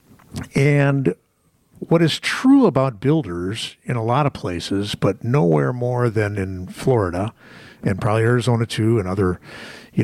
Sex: male